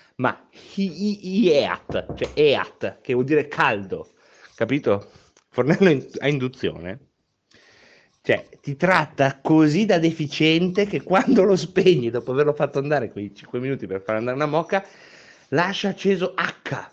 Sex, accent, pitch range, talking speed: male, native, 120-175 Hz, 130 wpm